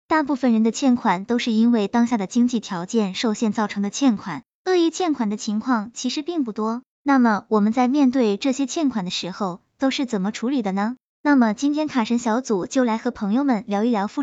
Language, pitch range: Chinese, 215-280 Hz